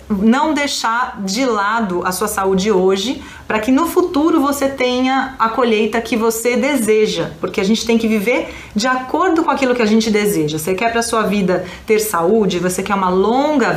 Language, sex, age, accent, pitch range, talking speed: Portuguese, female, 30-49, Brazilian, 190-245 Hz, 195 wpm